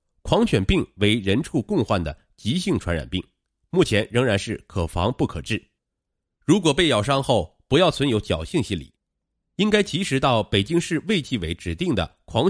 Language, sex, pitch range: Chinese, male, 90-140 Hz